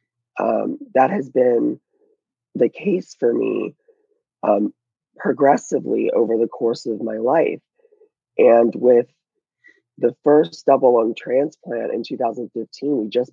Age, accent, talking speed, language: 20-39, American, 120 wpm, English